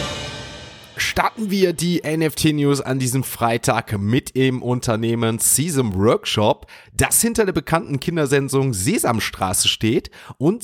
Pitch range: 110-150 Hz